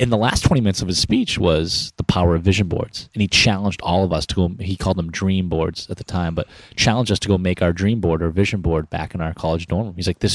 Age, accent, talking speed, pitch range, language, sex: 30-49, American, 295 wpm, 85-105 Hz, English, male